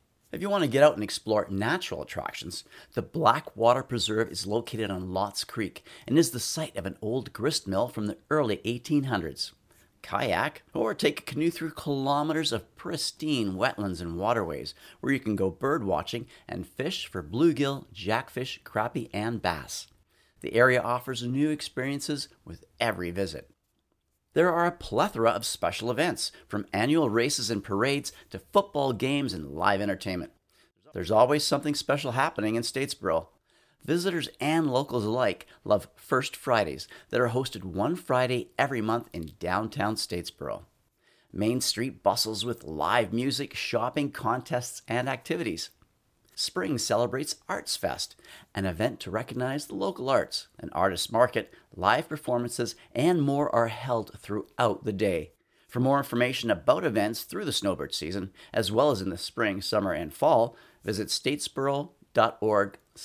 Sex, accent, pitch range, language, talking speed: male, American, 105-140 Hz, English, 150 wpm